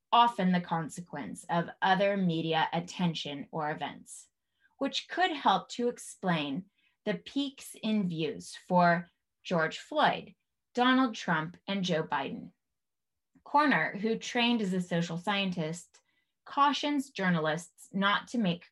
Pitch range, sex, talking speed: 170-235 Hz, female, 120 wpm